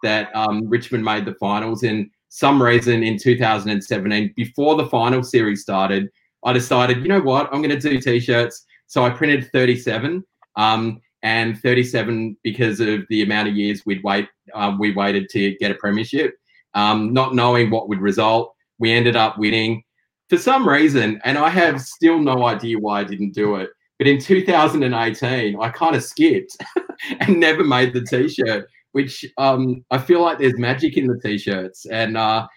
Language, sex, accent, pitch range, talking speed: English, male, Australian, 105-125 Hz, 175 wpm